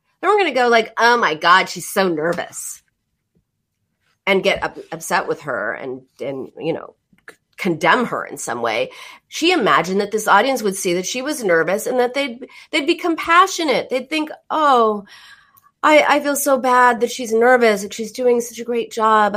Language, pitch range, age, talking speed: English, 205-285 Hz, 40-59, 195 wpm